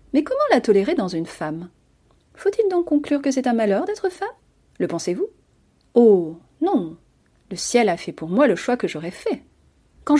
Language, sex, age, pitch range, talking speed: French, female, 40-59, 180-255 Hz, 190 wpm